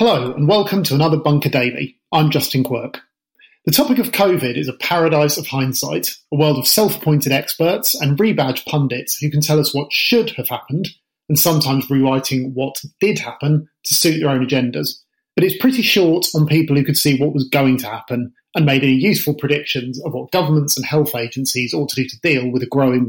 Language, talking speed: English, 205 wpm